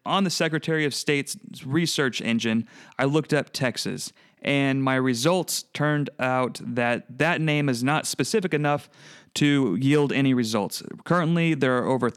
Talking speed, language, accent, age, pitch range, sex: 155 wpm, English, American, 30-49, 125-160 Hz, male